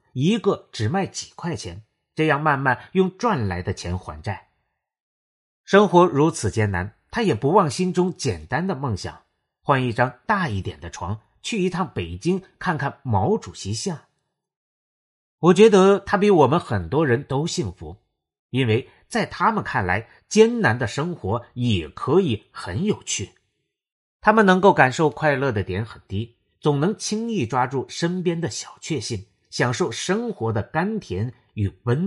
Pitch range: 105-180 Hz